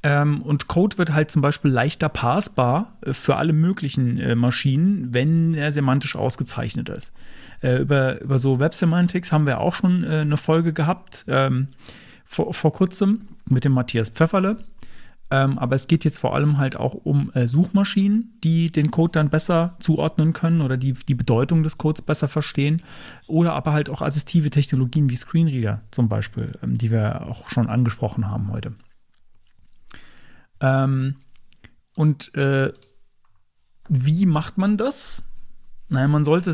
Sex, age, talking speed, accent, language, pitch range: male, 40-59, 160 wpm, German, German, 130-165 Hz